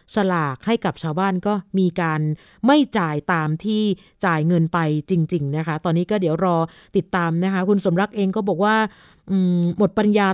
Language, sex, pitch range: Thai, female, 180-225 Hz